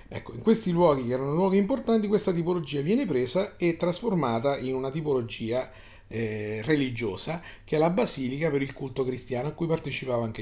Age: 30-49